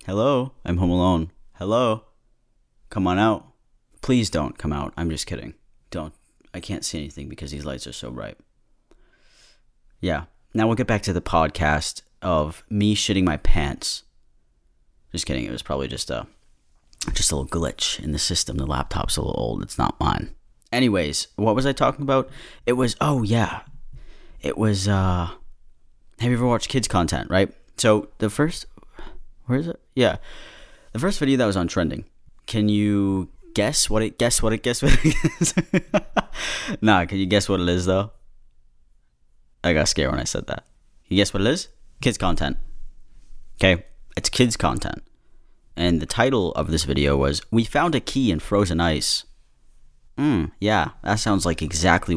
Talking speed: 175 wpm